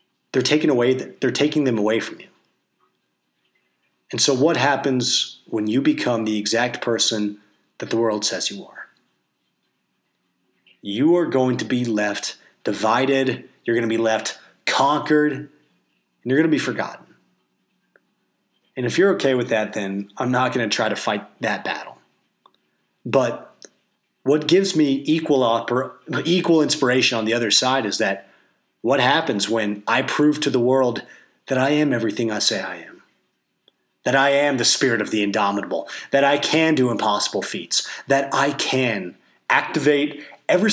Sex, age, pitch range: male, 30-49, 105-145 Hz